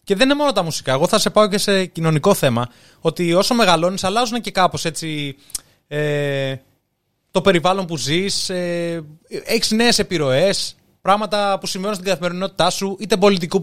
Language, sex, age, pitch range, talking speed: Greek, male, 20-39, 135-195 Hz, 160 wpm